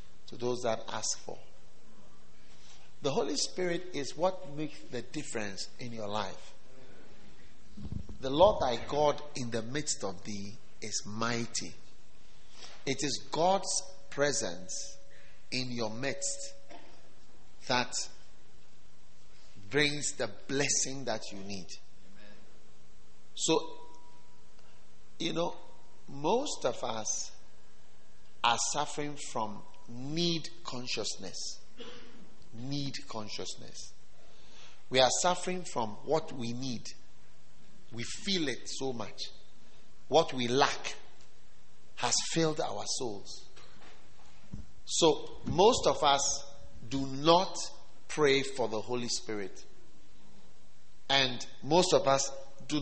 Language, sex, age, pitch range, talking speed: English, male, 50-69, 105-145 Hz, 100 wpm